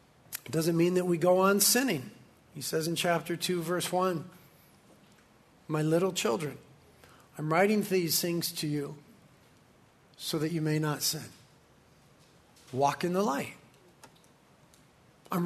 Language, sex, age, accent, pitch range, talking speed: English, male, 40-59, American, 140-175 Hz, 135 wpm